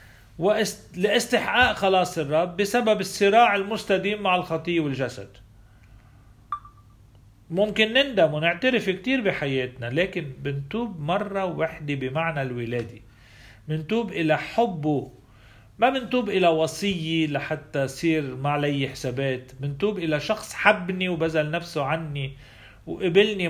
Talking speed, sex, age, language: 100 wpm, male, 40-59, Arabic